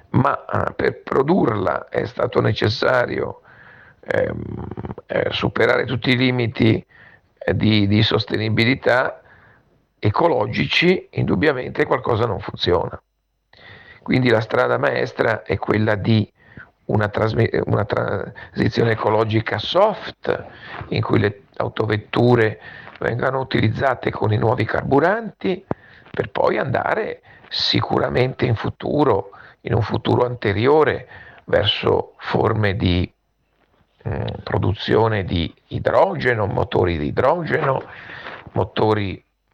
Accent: native